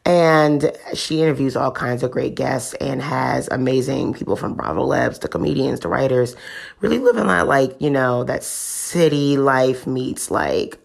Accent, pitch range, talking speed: American, 130-155 Hz, 165 wpm